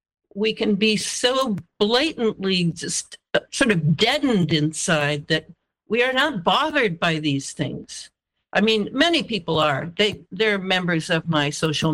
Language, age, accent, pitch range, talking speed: English, 60-79, American, 170-220 Hz, 145 wpm